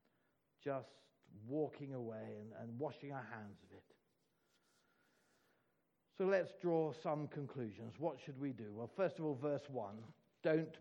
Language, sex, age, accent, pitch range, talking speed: English, male, 60-79, British, 125-165 Hz, 145 wpm